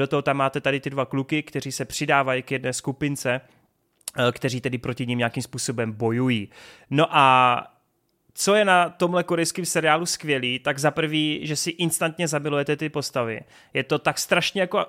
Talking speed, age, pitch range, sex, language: 175 wpm, 30-49, 135-160 Hz, male, Czech